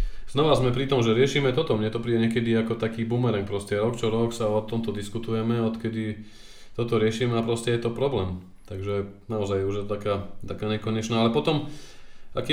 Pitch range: 105-125 Hz